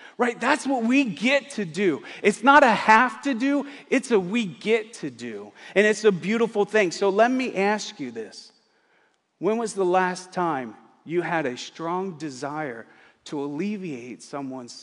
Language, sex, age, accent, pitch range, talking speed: English, male, 40-59, American, 130-195 Hz, 175 wpm